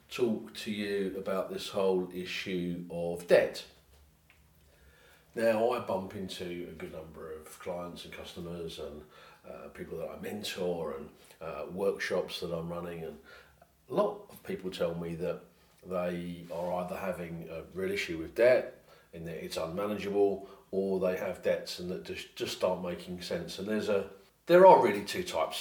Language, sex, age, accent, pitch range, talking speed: English, male, 40-59, British, 85-105 Hz, 170 wpm